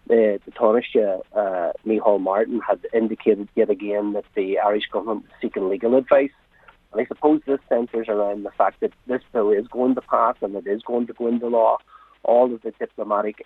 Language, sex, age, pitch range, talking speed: English, male, 40-59, 105-120 Hz, 195 wpm